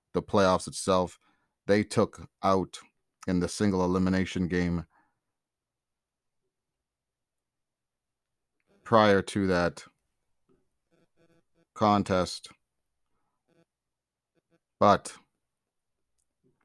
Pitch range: 90-110 Hz